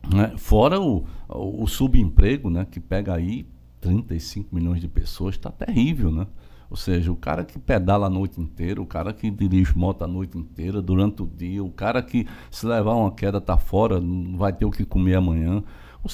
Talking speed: 195 wpm